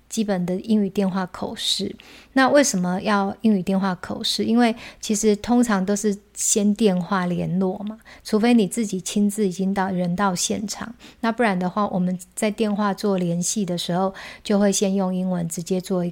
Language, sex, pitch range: Chinese, female, 185-215 Hz